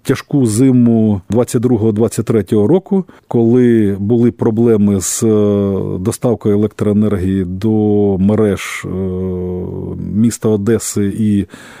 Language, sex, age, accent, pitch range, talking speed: Ukrainian, male, 40-59, native, 105-130 Hz, 75 wpm